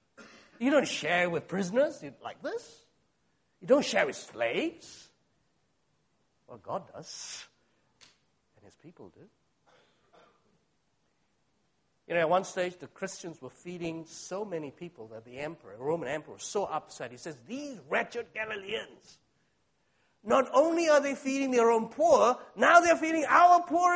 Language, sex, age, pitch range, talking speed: English, male, 50-69, 135-230 Hz, 145 wpm